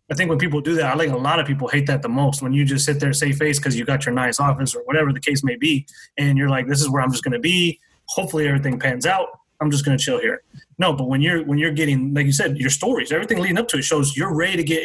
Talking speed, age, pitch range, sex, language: 315 wpm, 20-39, 140-160 Hz, male, English